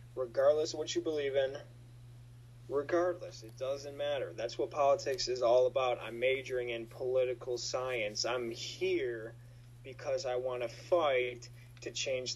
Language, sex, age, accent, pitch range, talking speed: English, male, 20-39, American, 120-140 Hz, 145 wpm